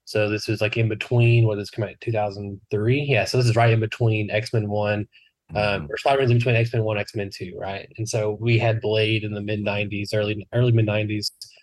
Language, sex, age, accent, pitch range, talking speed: English, male, 20-39, American, 105-120 Hz, 220 wpm